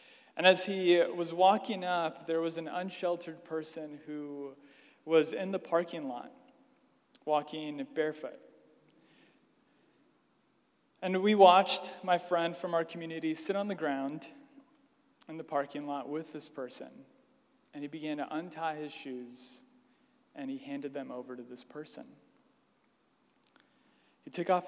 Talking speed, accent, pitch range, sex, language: 135 wpm, American, 150-190 Hz, male, English